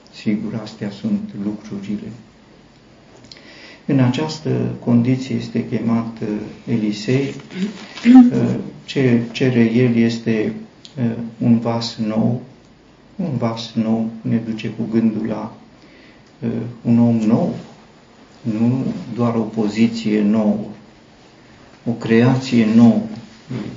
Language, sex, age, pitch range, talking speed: Romanian, male, 50-69, 110-125 Hz, 90 wpm